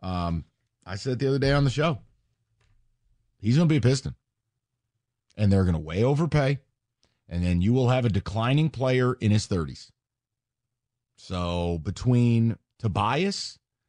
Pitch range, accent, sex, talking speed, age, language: 110-135 Hz, American, male, 145 wpm, 40-59, English